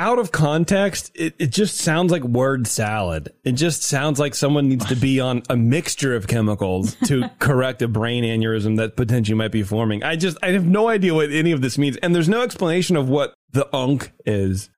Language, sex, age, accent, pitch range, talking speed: English, male, 30-49, American, 115-155 Hz, 215 wpm